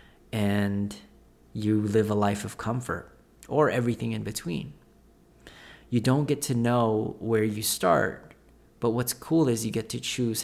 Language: English